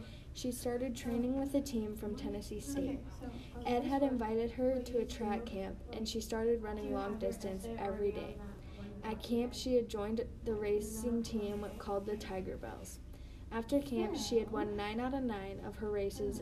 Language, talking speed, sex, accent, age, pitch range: English, 180 wpm, female, American, 10-29, 205-245 Hz